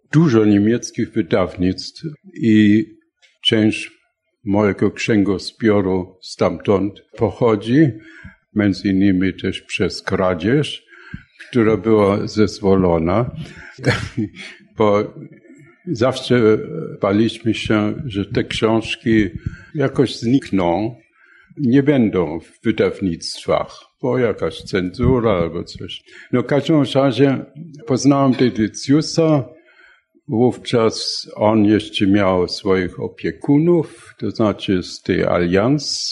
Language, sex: Polish, male